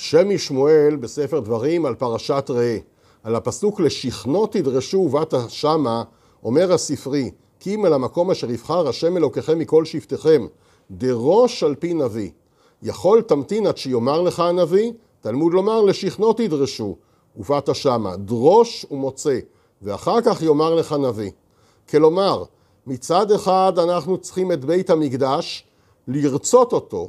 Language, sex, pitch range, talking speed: Hebrew, male, 125-185 Hz, 125 wpm